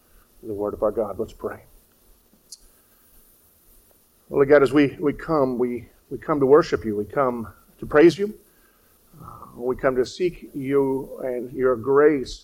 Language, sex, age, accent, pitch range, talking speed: English, male, 50-69, American, 100-130 Hz, 160 wpm